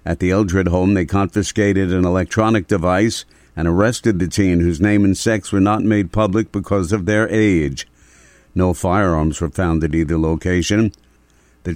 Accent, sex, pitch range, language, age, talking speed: American, male, 90-110 Hz, English, 60-79, 170 wpm